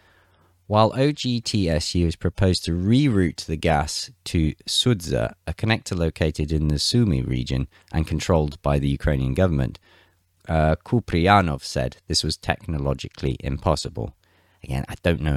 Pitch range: 75-105 Hz